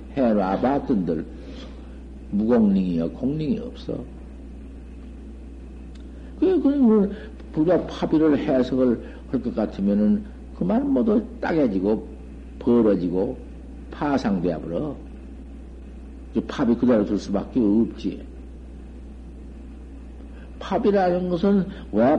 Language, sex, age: Korean, male, 60-79